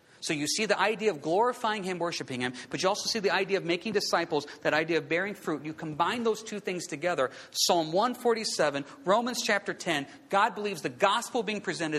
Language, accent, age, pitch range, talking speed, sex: English, American, 40-59, 170-250 Hz, 205 wpm, male